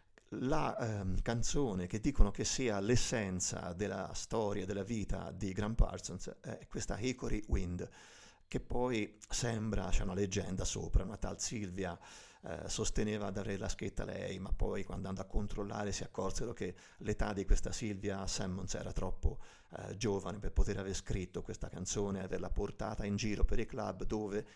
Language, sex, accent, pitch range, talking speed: Italian, male, native, 95-105 Hz, 170 wpm